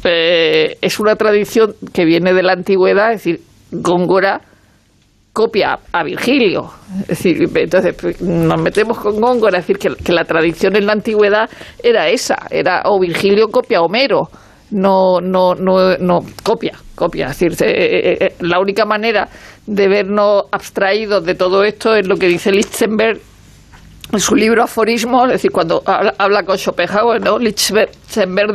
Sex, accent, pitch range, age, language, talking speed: female, Spanish, 185-215 Hz, 50-69, Spanish, 160 wpm